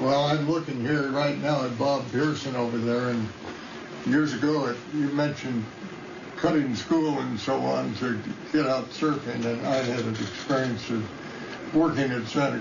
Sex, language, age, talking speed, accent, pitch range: male, English, 60-79, 160 wpm, American, 120-145 Hz